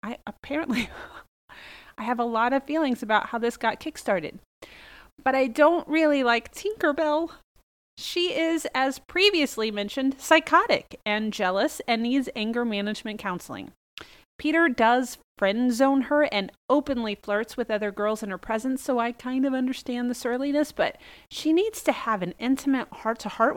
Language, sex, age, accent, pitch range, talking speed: English, female, 30-49, American, 225-315 Hz, 160 wpm